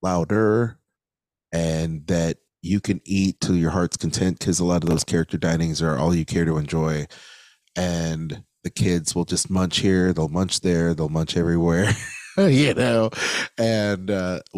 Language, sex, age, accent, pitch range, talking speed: English, male, 30-49, American, 75-90 Hz, 165 wpm